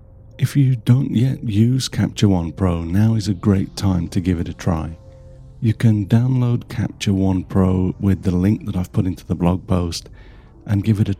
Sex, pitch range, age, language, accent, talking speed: male, 90-110 Hz, 50-69, English, British, 205 wpm